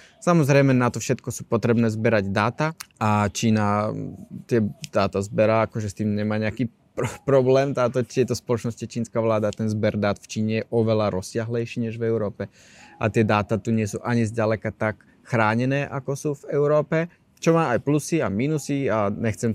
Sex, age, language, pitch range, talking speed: male, 20-39, Slovak, 110-135 Hz, 180 wpm